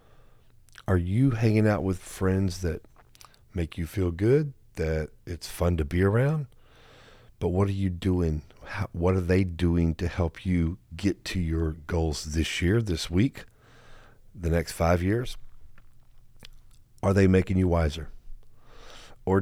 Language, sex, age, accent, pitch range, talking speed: English, male, 40-59, American, 85-110 Hz, 145 wpm